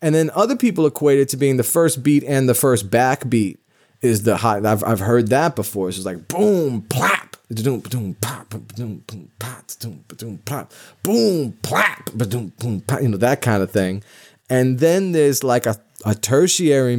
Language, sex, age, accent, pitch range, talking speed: English, male, 30-49, American, 105-125 Hz, 170 wpm